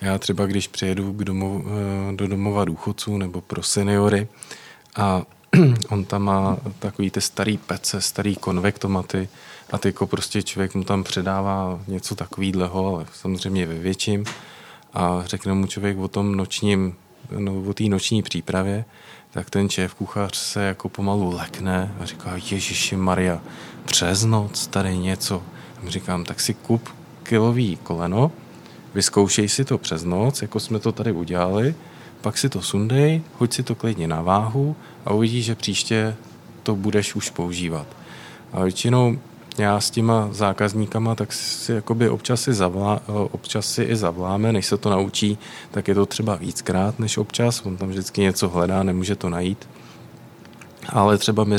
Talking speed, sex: 155 wpm, male